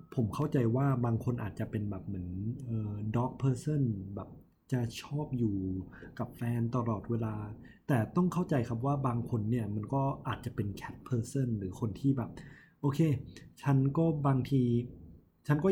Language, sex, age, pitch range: Thai, male, 20-39, 110-140 Hz